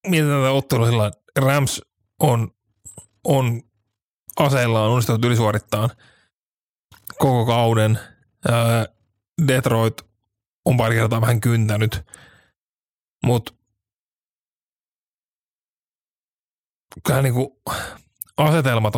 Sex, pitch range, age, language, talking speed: male, 110-130 Hz, 30-49, Finnish, 70 wpm